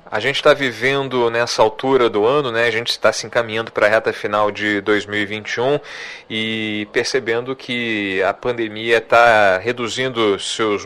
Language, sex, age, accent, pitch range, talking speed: Portuguese, male, 40-59, Brazilian, 110-155 Hz, 155 wpm